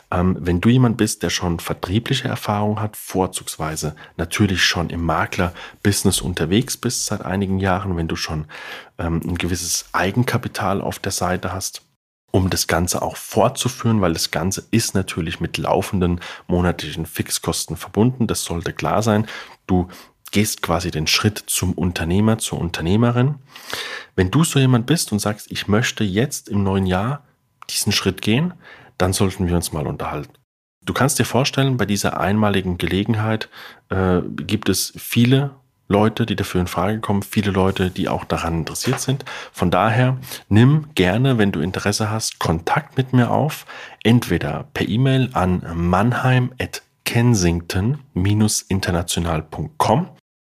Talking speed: 145 wpm